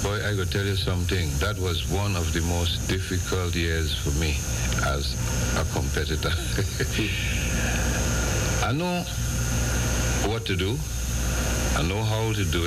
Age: 60-79